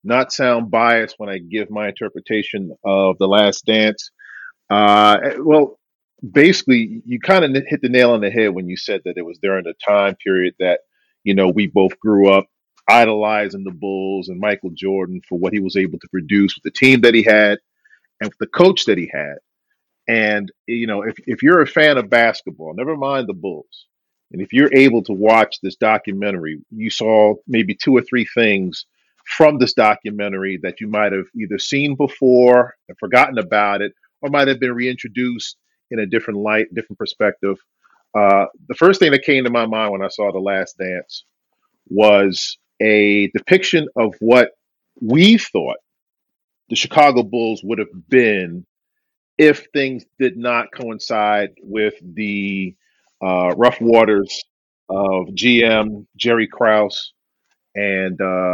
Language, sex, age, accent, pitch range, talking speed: English, male, 40-59, American, 100-125 Hz, 165 wpm